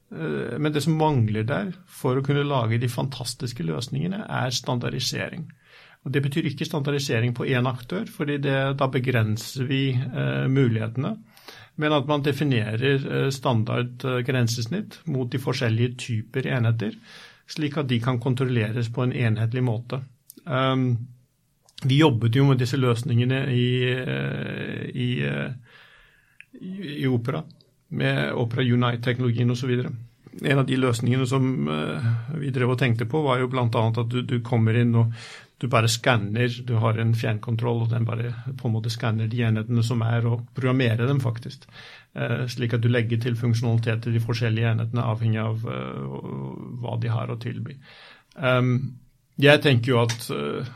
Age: 50-69